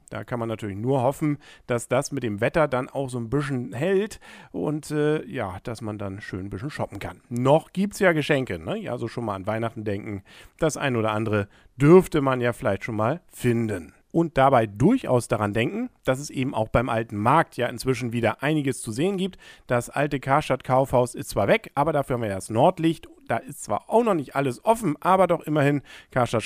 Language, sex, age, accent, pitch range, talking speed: German, male, 50-69, German, 105-150 Hz, 215 wpm